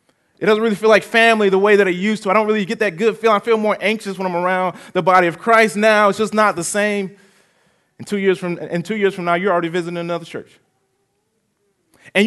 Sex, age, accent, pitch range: male, 20-39, American, 175-235 Hz